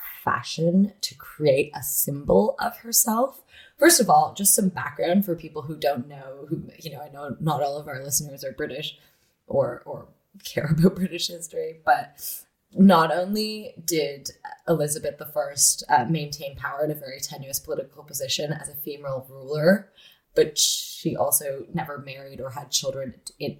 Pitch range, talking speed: 145-185 Hz, 165 wpm